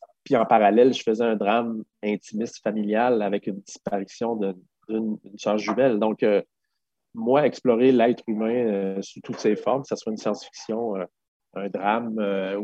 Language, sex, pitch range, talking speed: French, male, 105-120 Hz, 160 wpm